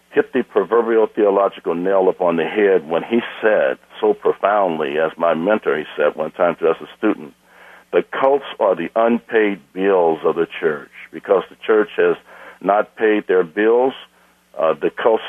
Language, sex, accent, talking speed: English, male, American, 180 wpm